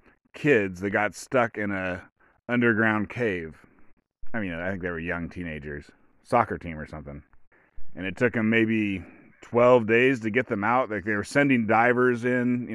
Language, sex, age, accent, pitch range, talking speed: English, male, 30-49, American, 95-120 Hz, 180 wpm